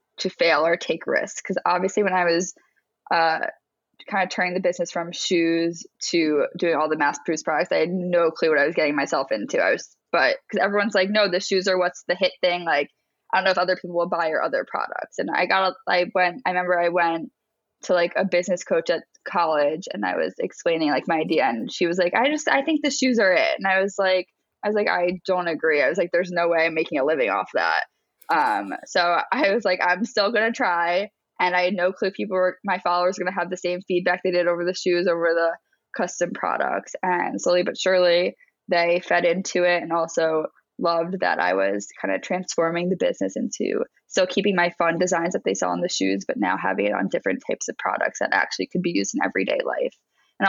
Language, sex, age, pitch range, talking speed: English, female, 10-29, 170-190 Hz, 240 wpm